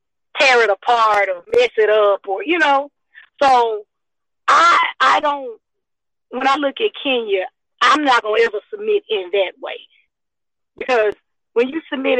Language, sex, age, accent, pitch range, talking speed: English, female, 40-59, American, 235-345 Hz, 155 wpm